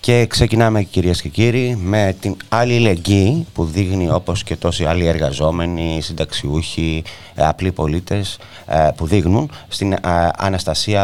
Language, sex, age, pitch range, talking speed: Greek, male, 30-49, 80-105 Hz, 125 wpm